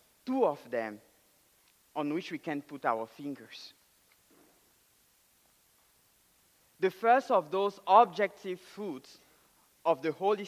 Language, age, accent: English, 50-69, French